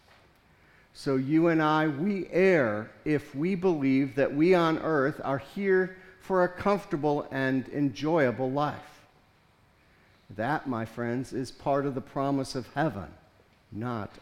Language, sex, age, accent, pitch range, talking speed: English, male, 50-69, American, 115-155 Hz, 135 wpm